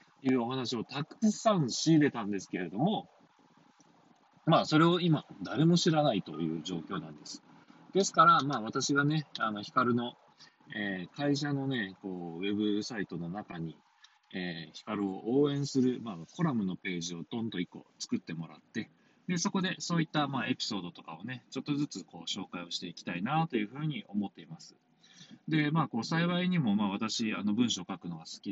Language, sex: Japanese, male